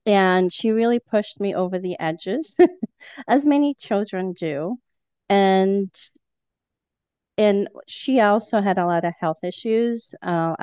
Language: English